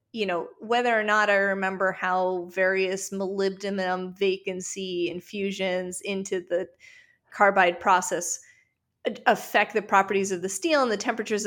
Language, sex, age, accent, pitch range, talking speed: English, female, 20-39, American, 185-235 Hz, 130 wpm